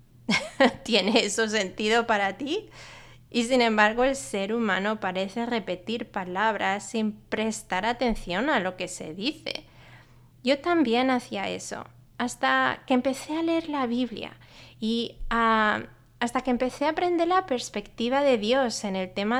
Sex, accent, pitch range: female, Spanish, 195-255 Hz